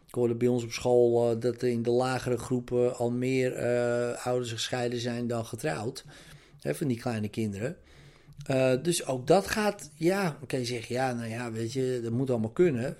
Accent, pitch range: Dutch, 115-145 Hz